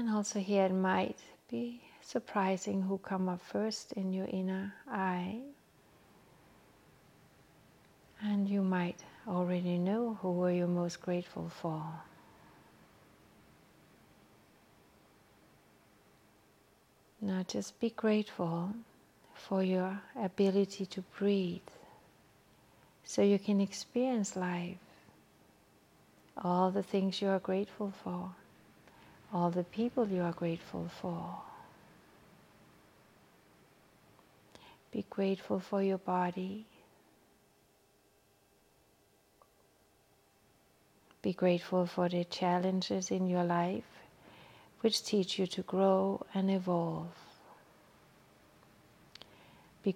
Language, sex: English, female